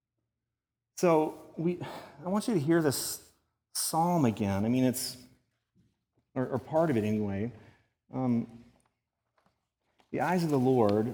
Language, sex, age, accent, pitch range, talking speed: English, male, 40-59, American, 110-135 Hz, 135 wpm